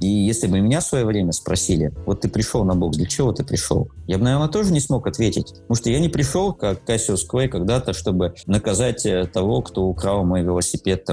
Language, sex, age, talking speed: Russian, male, 20-39, 215 wpm